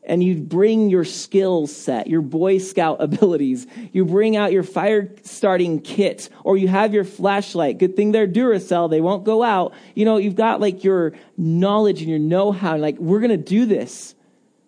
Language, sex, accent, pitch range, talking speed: English, male, American, 160-215 Hz, 190 wpm